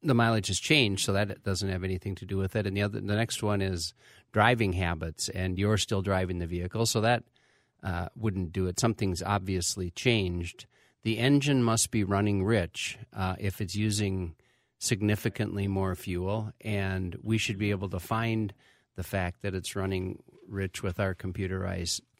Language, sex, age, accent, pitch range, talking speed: English, male, 50-69, American, 90-110 Hz, 180 wpm